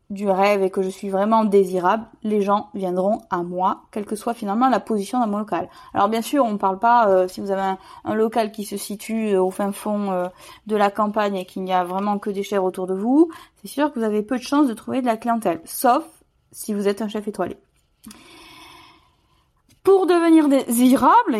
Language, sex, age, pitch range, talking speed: French, female, 20-39, 210-275 Hz, 225 wpm